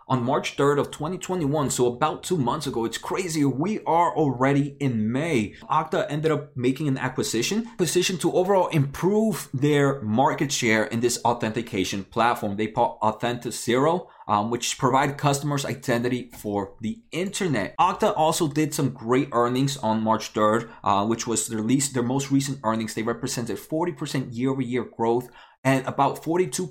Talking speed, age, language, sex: 165 wpm, 30-49, English, male